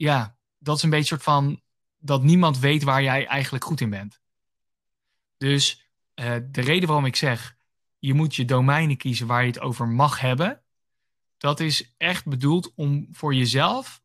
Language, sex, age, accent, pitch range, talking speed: Dutch, male, 20-39, Dutch, 125-150 Hz, 175 wpm